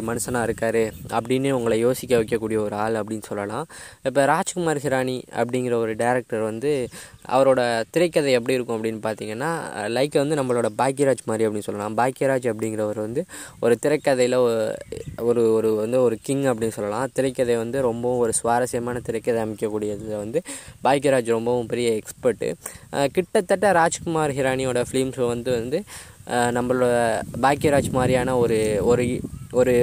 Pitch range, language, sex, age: 115-135 Hz, Tamil, female, 20-39